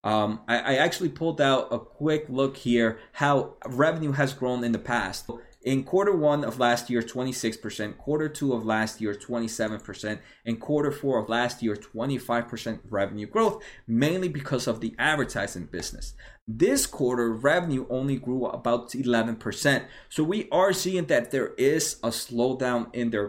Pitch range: 115-145 Hz